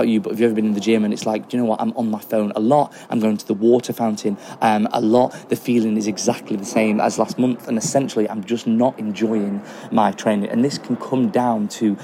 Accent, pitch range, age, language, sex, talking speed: British, 110-125 Hz, 20-39, English, male, 265 wpm